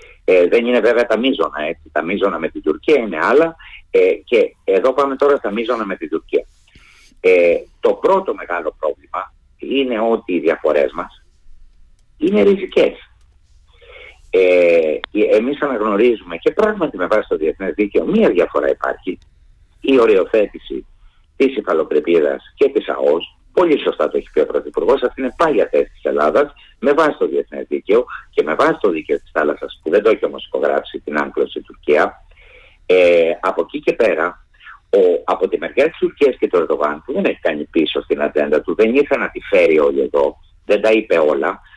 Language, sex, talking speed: Greek, male, 180 wpm